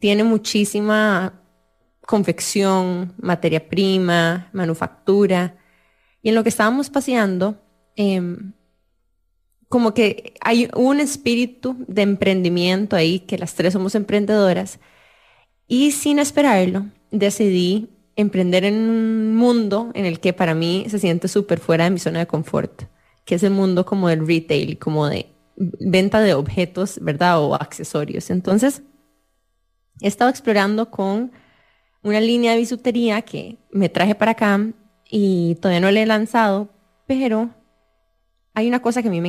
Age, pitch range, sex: 20-39, 175-220 Hz, female